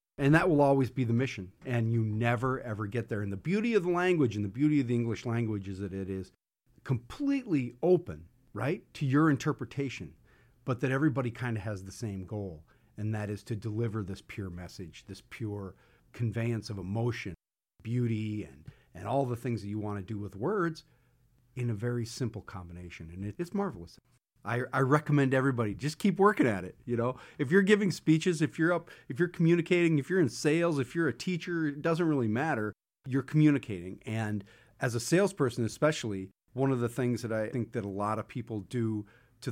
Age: 40-59